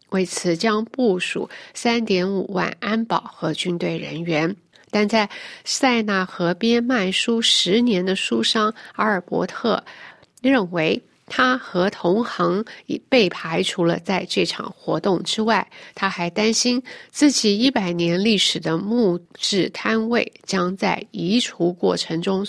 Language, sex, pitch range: Chinese, female, 185-235 Hz